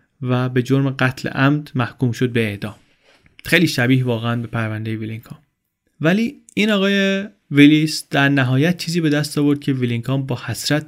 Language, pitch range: Persian, 120-135 Hz